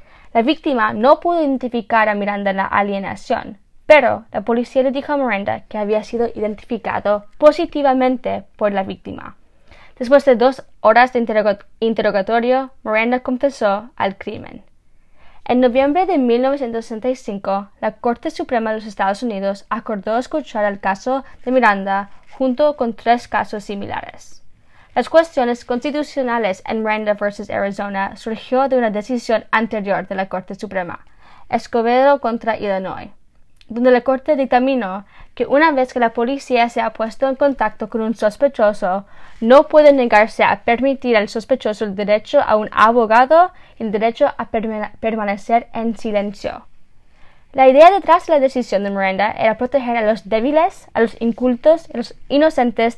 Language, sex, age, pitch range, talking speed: English, female, 10-29, 210-265 Hz, 150 wpm